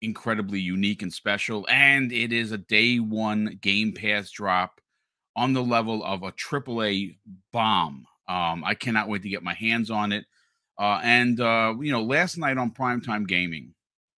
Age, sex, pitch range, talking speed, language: 40-59, male, 100-120 Hz, 175 wpm, English